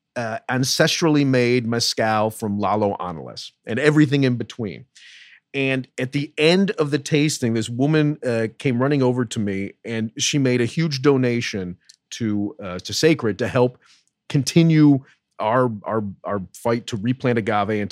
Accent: American